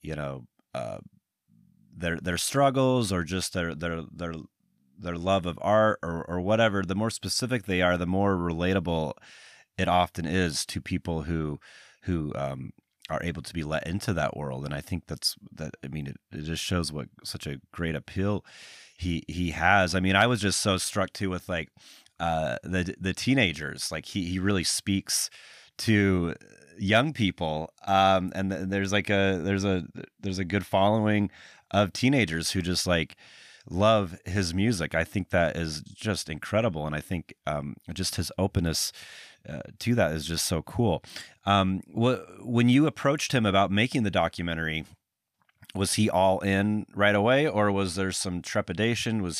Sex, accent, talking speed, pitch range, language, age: male, American, 175 wpm, 85-100 Hz, English, 30-49